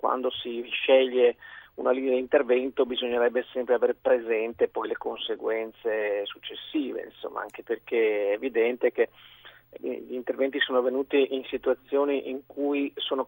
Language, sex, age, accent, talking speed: Italian, male, 40-59, native, 135 wpm